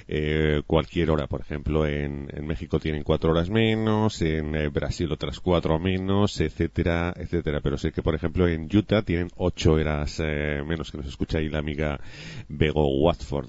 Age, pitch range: 30-49, 80-95 Hz